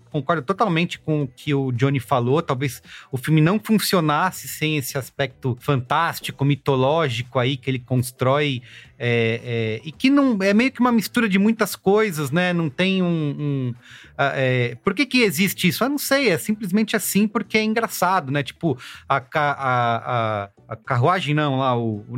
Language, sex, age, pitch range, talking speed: Portuguese, male, 30-49, 135-190 Hz, 180 wpm